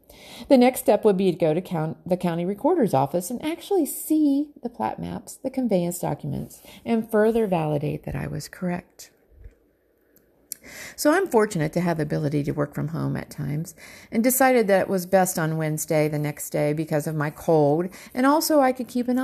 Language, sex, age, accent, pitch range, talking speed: English, female, 50-69, American, 160-250 Hz, 195 wpm